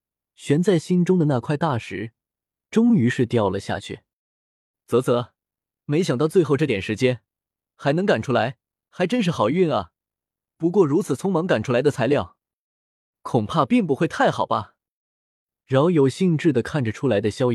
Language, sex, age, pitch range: Chinese, male, 20-39, 110-165 Hz